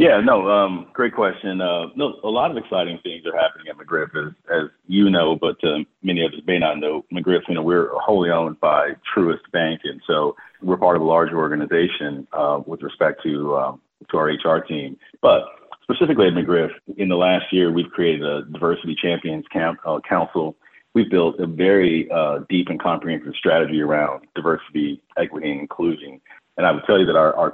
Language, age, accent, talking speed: English, 40-59, American, 200 wpm